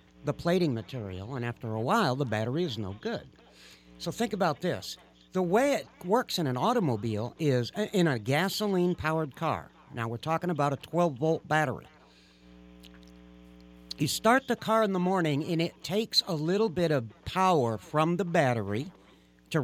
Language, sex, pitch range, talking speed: English, male, 110-180 Hz, 165 wpm